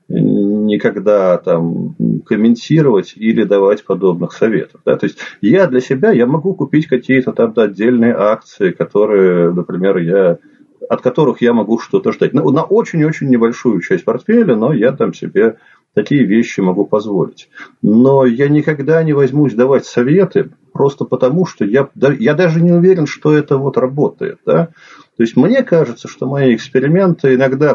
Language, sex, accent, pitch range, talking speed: Russian, male, native, 105-150 Hz, 160 wpm